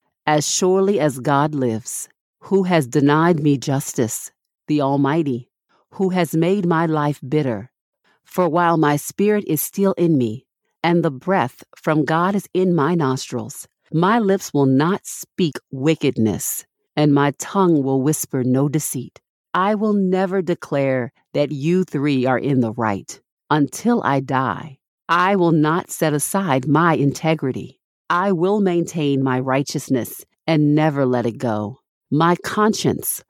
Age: 50-69